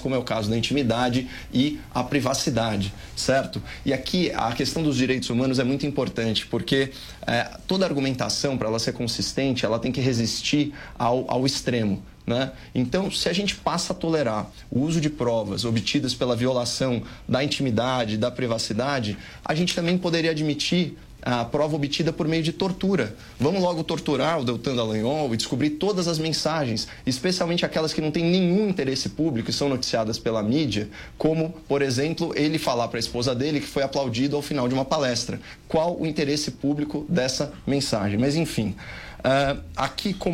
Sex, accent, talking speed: male, Brazilian, 175 wpm